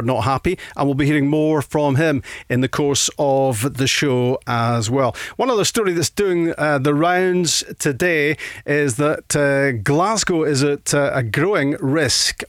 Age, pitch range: 40-59, 130-155 Hz